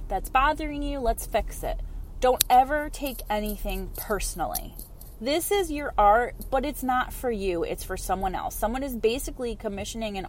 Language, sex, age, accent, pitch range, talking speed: English, female, 30-49, American, 190-270 Hz, 170 wpm